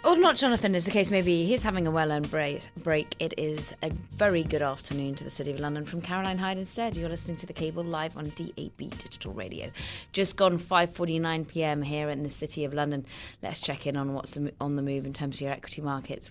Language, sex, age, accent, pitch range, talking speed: English, female, 20-39, British, 150-195 Hz, 230 wpm